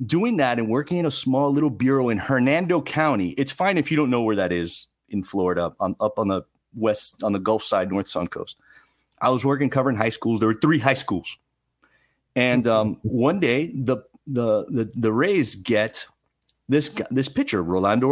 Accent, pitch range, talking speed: American, 120-160 Hz, 200 wpm